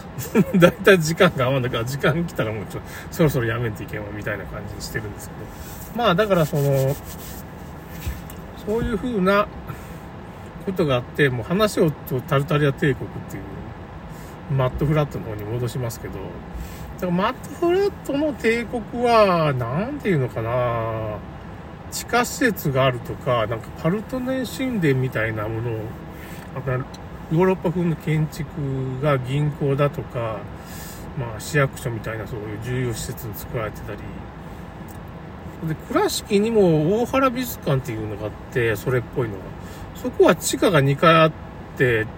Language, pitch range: Japanese, 115-195 Hz